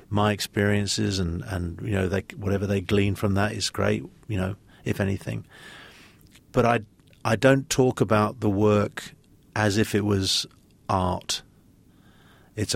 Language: English